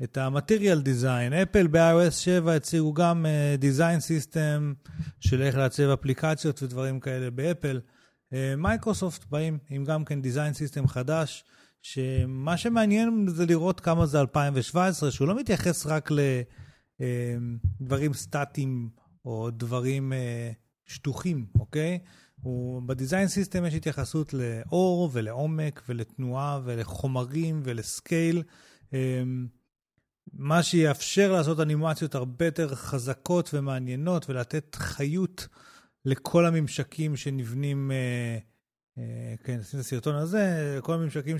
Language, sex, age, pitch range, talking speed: Hebrew, male, 30-49, 130-165 Hz, 115 wpm